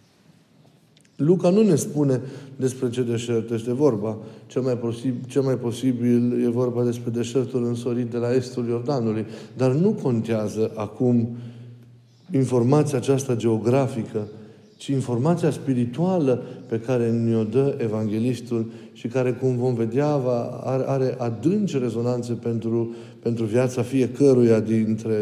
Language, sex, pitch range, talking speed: Romanian, male, 115-135 Hz, 120 wpm